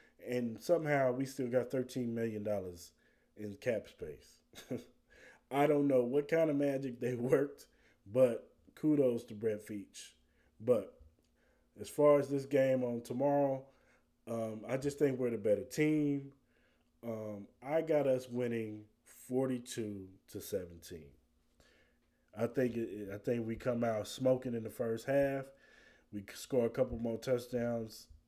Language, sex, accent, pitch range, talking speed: English, male, American, 110-140 Hz, 145 wpm